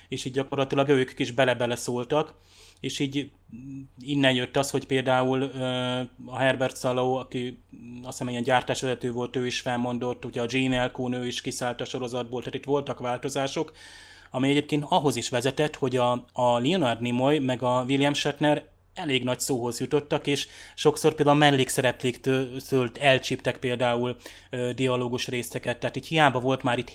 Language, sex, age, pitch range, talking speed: Hungarian, male, 20-39, 125-135 Hz, 160 wpm